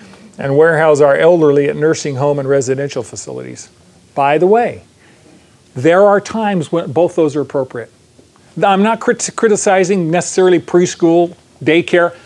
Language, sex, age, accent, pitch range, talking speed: English, male, 40-59, American, 145-185 Hz, 135 wpm